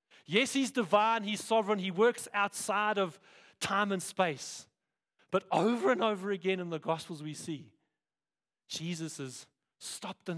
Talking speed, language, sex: 150 wpm, English, male